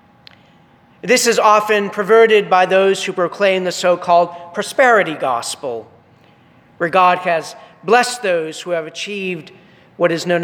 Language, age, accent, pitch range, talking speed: English, 40-59, American, 170-210 Hz, 130 wpm